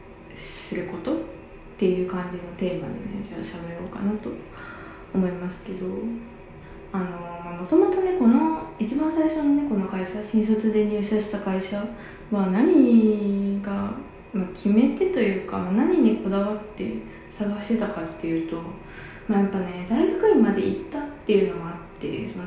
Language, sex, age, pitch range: Japanese, female, 20-39, 185-245 Hz